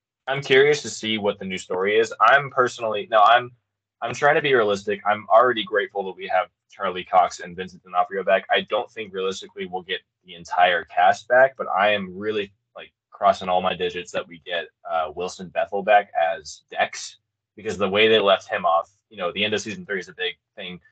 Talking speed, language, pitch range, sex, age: 220 wpm, English, 95-145 Hz, male, 20-39